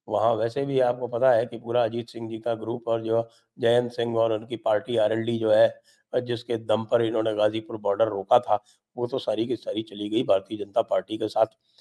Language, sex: English, male